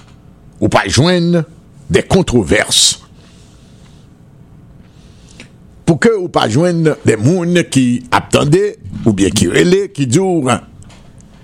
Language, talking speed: English, 105 wpm